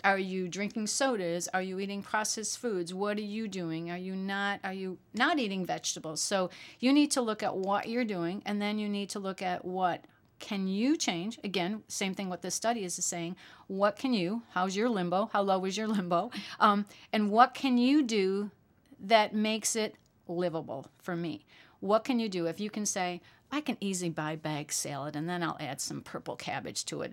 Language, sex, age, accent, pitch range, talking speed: English, female, 50-69, American, 180-225 Hz, 210 wpm